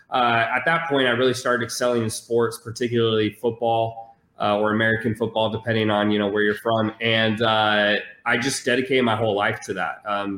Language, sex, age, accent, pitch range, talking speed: English, male, 20-39, American, 110-125 Hz, 195 wpm